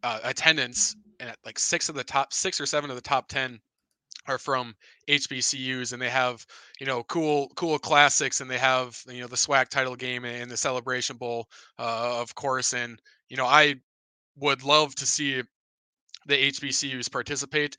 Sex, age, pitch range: male, 20-39, 120-140 Hz